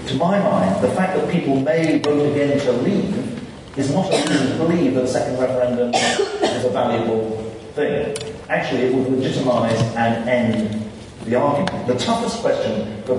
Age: 40-59